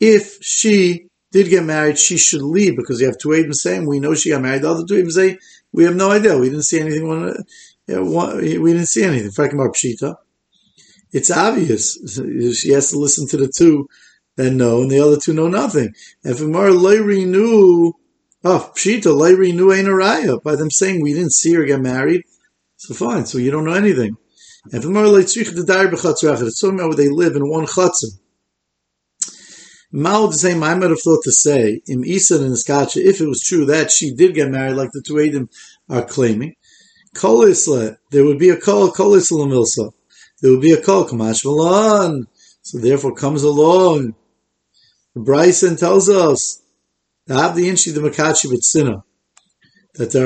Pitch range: 140-185 Hz